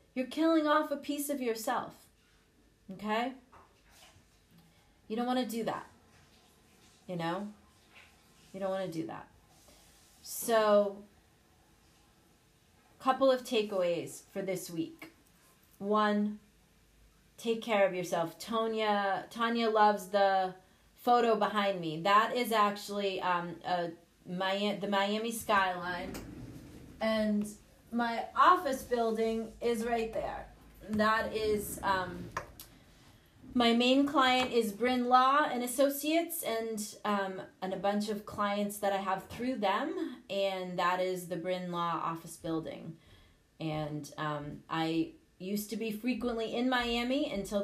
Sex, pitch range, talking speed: female, 180-230 Hz, 120 wpm